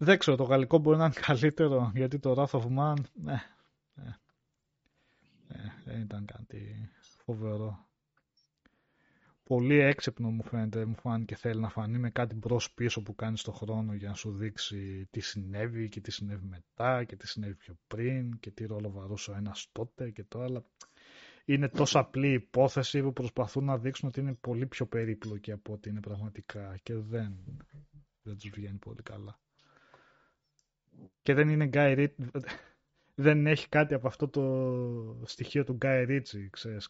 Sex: male